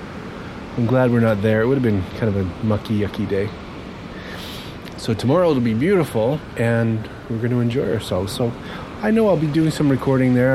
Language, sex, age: English, male, 30-49